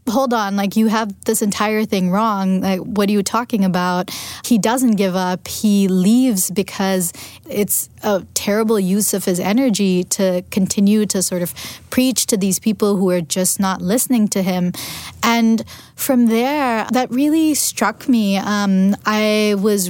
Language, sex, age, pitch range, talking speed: English, female, 20-39, 185-215 Hz, 165 wpm